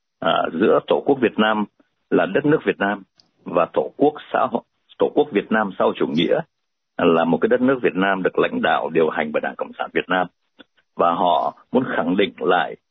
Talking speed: 220 wpm